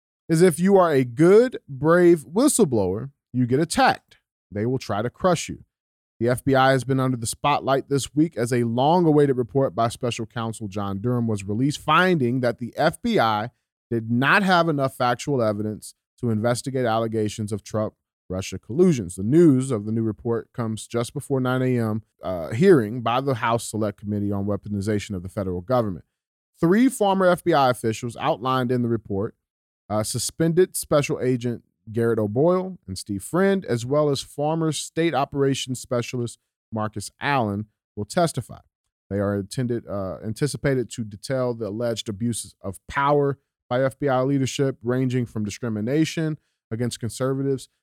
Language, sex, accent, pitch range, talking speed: English, male, American, 105-140 Hz, 155 wpm